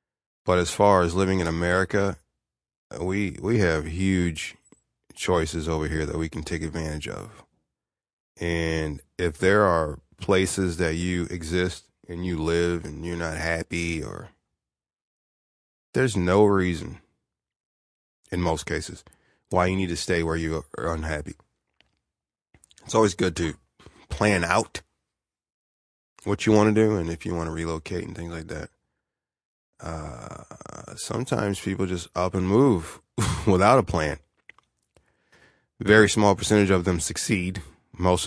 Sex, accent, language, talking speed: male, American, English, 140 wpm